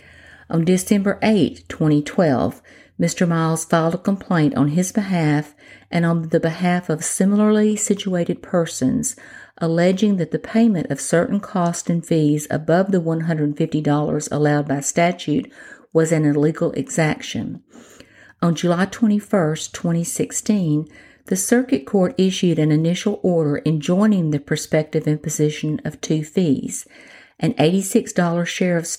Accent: American